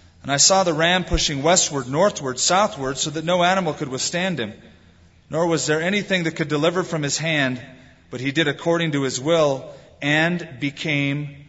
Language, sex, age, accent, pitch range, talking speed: English, male, 30-49, American, 105-180 Hz, 185 wpm